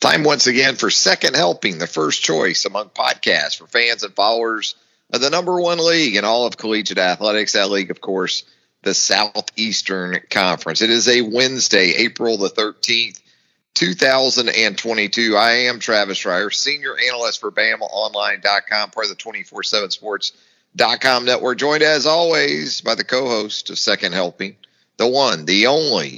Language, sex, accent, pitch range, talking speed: English, male, American, 110-155 Hz, 155 wpm